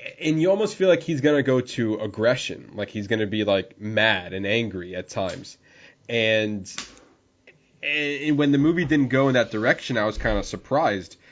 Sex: male